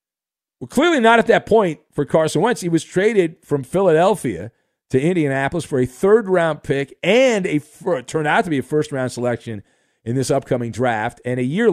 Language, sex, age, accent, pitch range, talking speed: English, male, 50-69, American, 135-205 Hz, 195 wpm